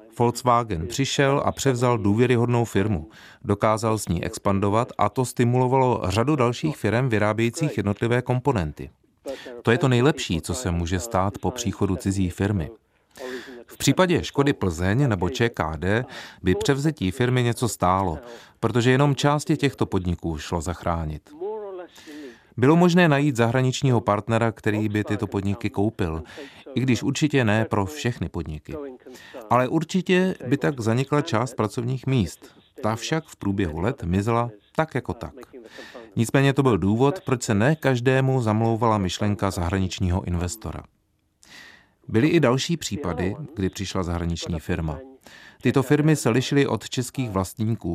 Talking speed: 140 wpm